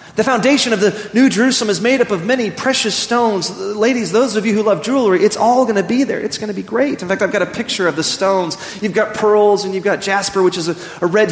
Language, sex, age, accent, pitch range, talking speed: English, male, 30-49, American, 170-225 Hz, 265 wpm